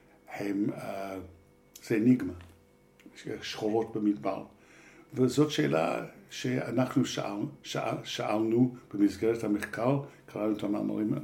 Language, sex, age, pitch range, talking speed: Hebrew, male, 60-79, 100-120 Hz, 85 wpm